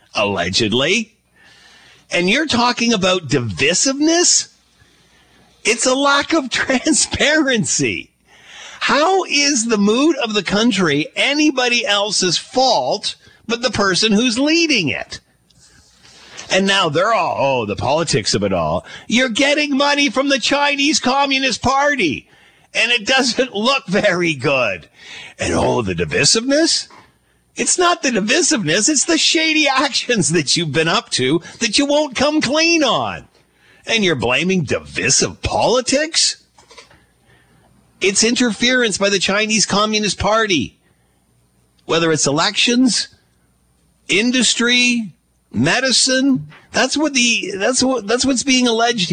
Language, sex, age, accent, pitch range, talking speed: English, male, 50-69, American, 165-265 Hz, 120 wpm